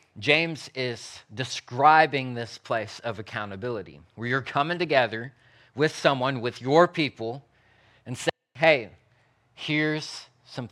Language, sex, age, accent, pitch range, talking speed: English, male, 30-49, American, 115-145 Hz, 120 wpm